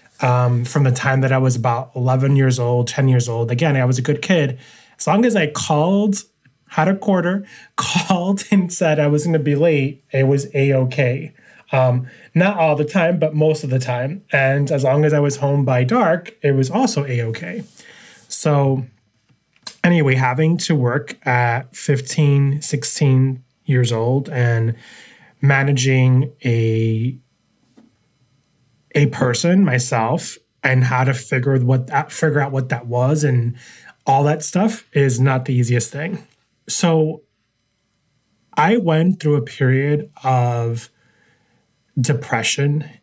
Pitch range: 125-150 Hz